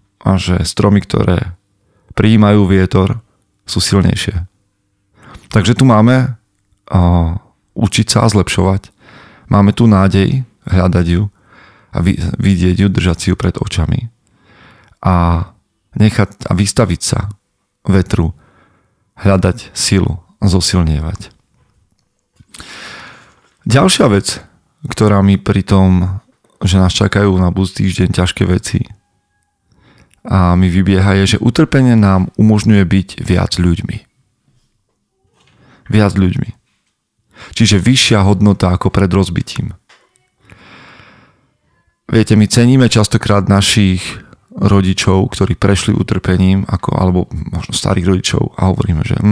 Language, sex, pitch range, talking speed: Slovak, male, 95-105 Hz, 105 wpm